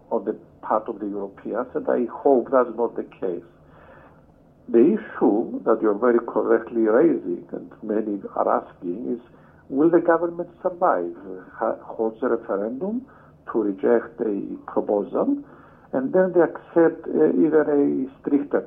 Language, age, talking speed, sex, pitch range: English, 60-79, 140 wpm, male, 115-160 Hz